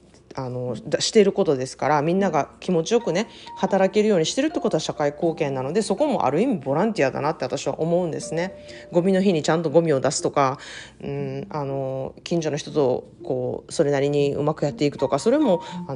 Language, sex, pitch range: Japanese, female, 145-200 Hz